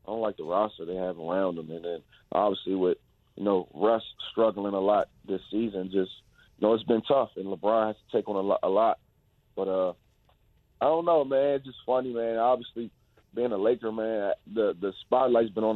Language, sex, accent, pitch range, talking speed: English, male, American, 95-110 Hz, 215 wpm